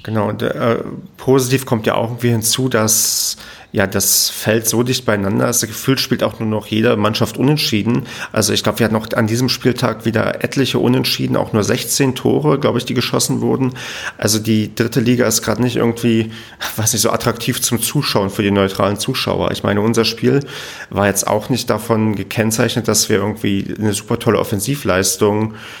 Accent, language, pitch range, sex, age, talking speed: German, German, 100-115 Hz, male, 40-59, 190 wpm